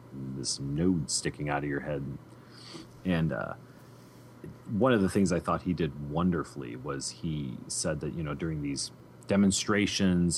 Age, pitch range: 30-49, 75-95 Hz